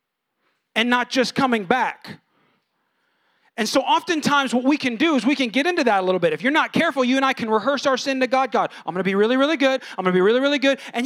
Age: 30-49